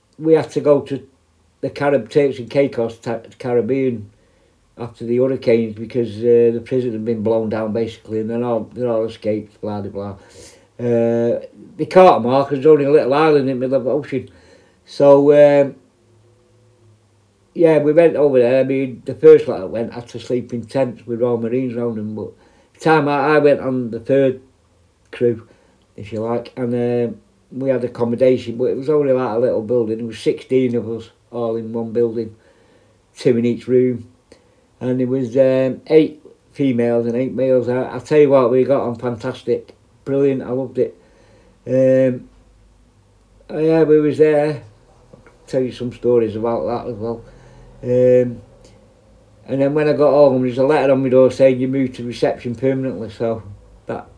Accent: British